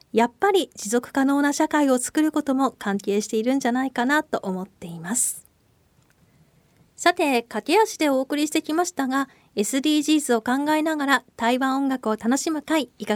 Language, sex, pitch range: Japanese, female, 230-305 Hz